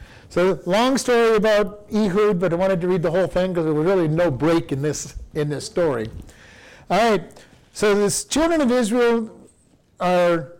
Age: 50-69